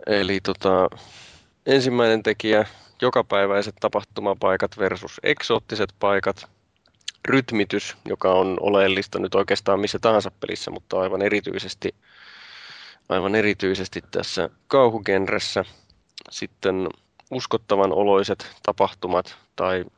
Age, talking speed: 20-39, 85 wpm